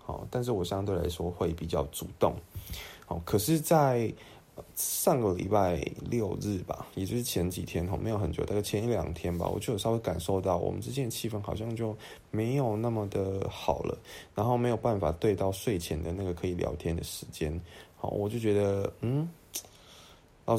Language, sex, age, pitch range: Chinese, male, 20-39, 85-110 Hz